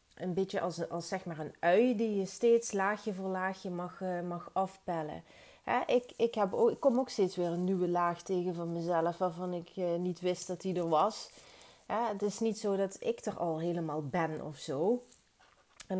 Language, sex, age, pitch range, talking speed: Dutch, female, 30-49, 180-225 Hz, 215 wpm